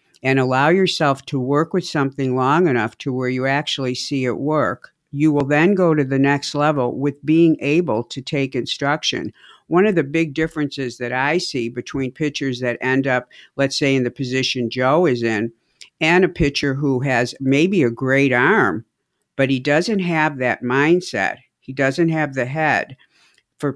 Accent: American